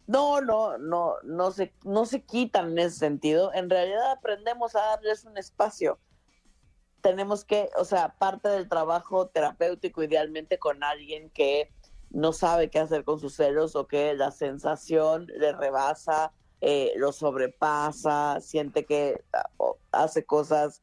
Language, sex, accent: Spanish, female, Mexican